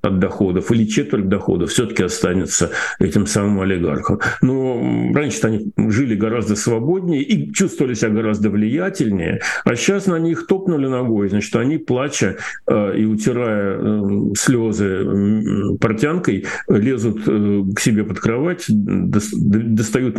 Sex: male